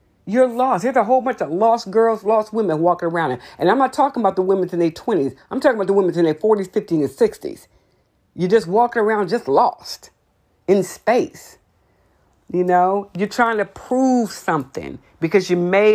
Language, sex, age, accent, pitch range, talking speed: English, female, 40-59, American, 170-230 Hz, 200 wpm